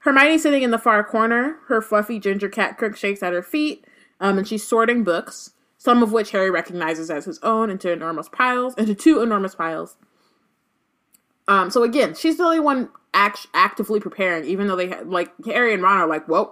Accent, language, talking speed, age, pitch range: American, English, 205 wpm, 20-39, 180-230 Hz